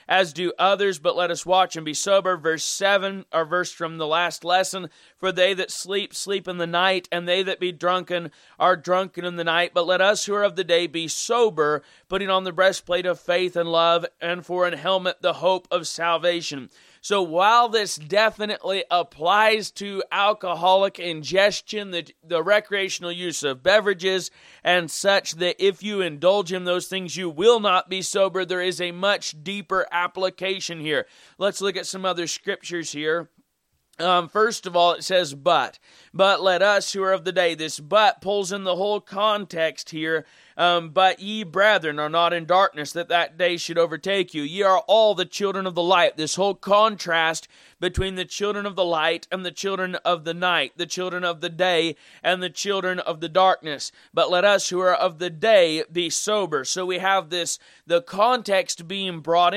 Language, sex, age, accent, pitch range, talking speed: English, male, 30-49, American, 170-195 Hz, 195 wpm